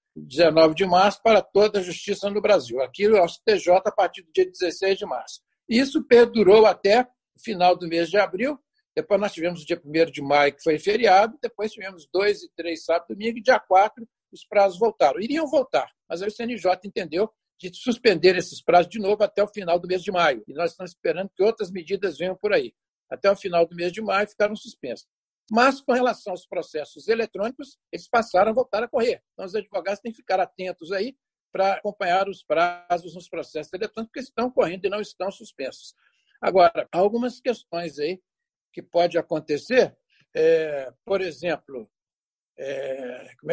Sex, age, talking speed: male, 60-79, 190 wpm